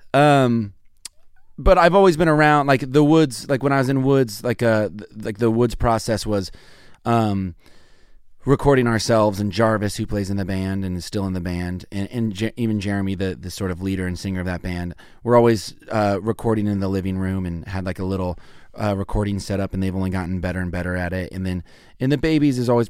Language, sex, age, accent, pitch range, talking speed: English, male, 30-49, American, 95-115 Hz, 230 wpm